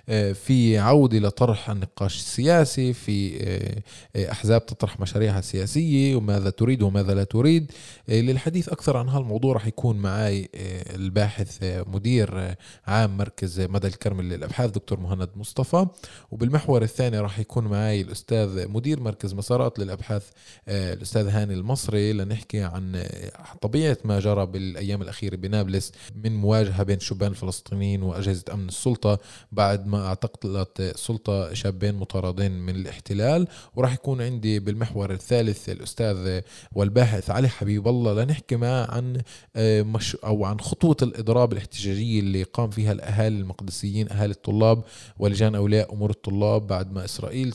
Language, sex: Arabic, male